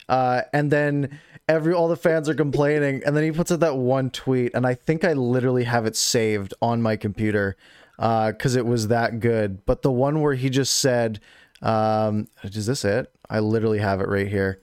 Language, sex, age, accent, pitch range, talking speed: English, male, 20-39, American, 115-155 Hz, 210 wpm